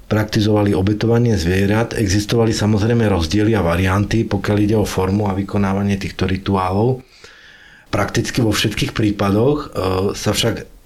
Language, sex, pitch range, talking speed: Slovak, male, 95-115 Hz, 120 wpm